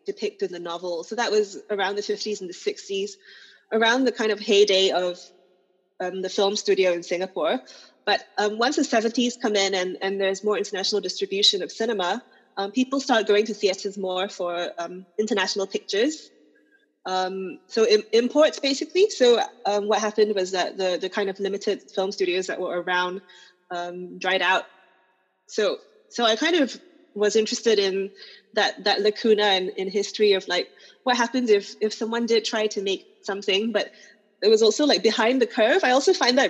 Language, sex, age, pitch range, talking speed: English, female, 20-39, 195-260 Hz, 185 wpm